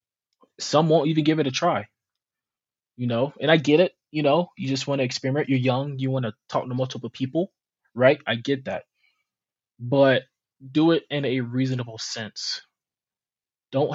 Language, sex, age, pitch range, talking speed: English, male, 20-39, 110-140 Hz, 175 wpm